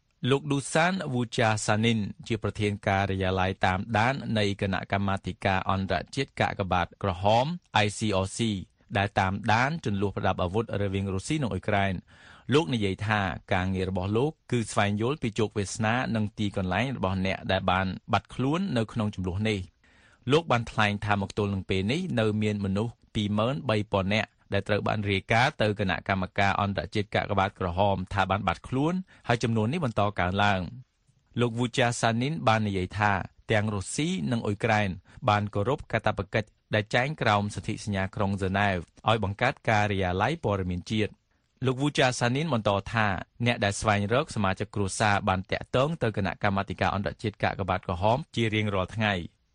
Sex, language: male, English